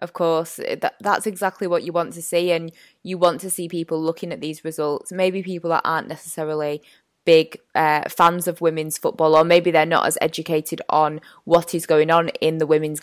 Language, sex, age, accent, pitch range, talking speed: English, female, 20-39, British, 165-220 Hz, 205 wpm